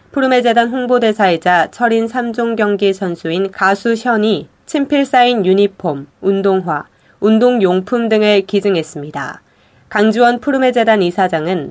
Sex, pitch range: female, 180-230 Hz